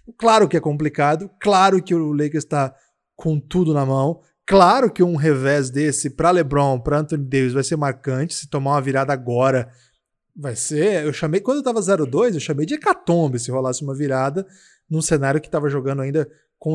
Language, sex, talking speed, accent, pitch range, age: Portuguese, male, 190 wpm, Brazilian, 145-180 Hz, 20-39